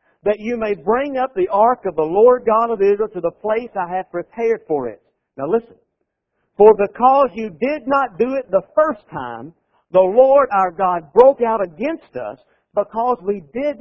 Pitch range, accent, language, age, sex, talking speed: 150-245 Hz, American, English, 50-69, male, 190 wpm